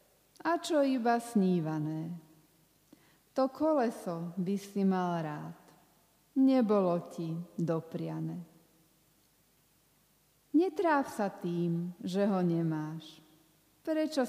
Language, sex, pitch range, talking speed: Slovak, female, 165-230 Hz, 85 wpm